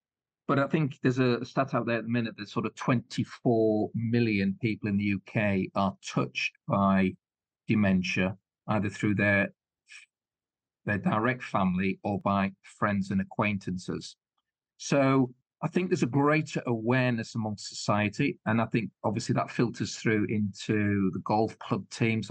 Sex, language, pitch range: male, English, 100-130 Hz